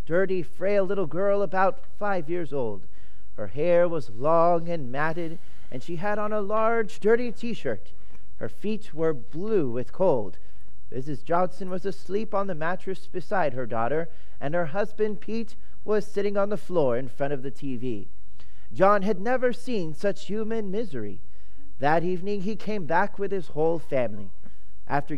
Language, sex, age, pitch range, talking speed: English, male, 30-49, 145-205 Hz, 165 wpm